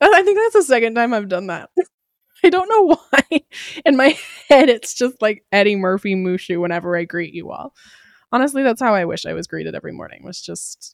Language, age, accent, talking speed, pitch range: English, 20-39, American, 215 wpm, 180-255 Hz